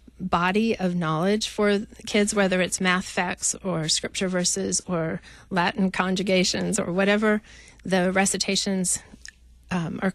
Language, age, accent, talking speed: English, 40-59, American, 125 wpm